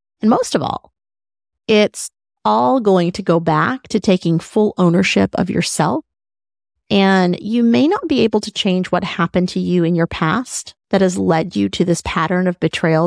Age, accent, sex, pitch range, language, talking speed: 30-49, American, female, 175-210 Hz, English, 185 wpm